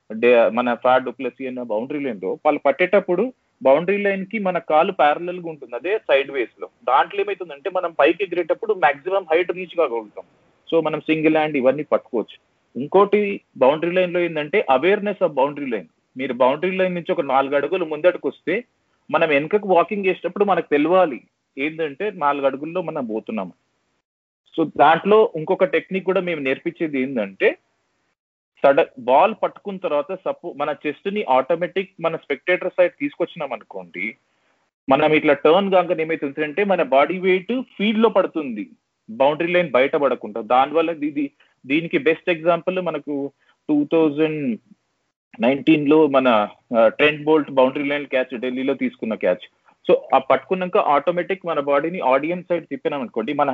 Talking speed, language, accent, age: 140 wpm, Telugu, native, 40-59